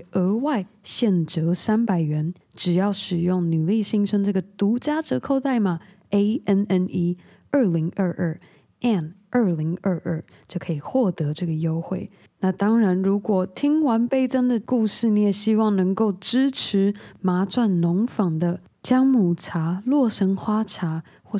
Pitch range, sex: 175-225 Hz, female